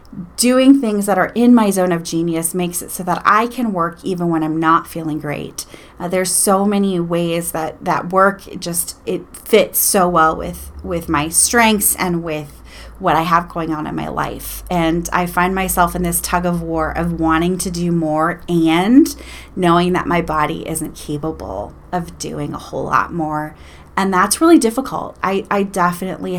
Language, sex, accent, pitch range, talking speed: English, female, American, 160-190 Hz, 190 wpm